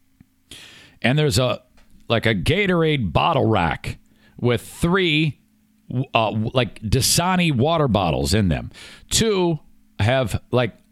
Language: English